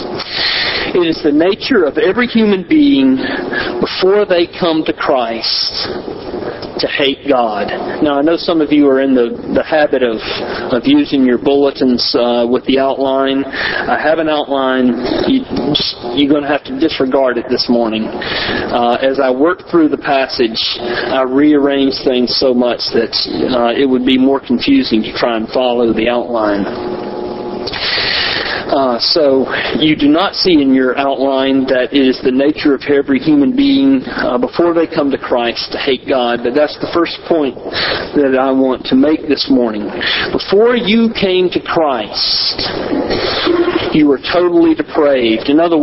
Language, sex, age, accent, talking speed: English, male, 40-59, American, 160 wpm